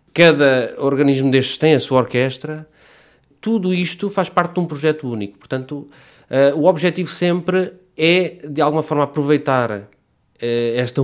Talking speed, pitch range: 135 wpm, 115-150 Hz